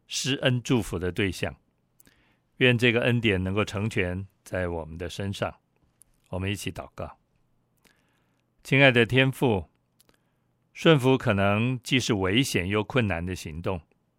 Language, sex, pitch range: Chinese, male, 95-120 Hz